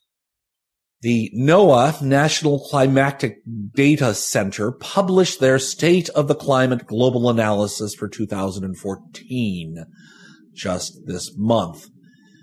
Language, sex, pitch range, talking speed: English, male, 105-145 Hz, 90 wpm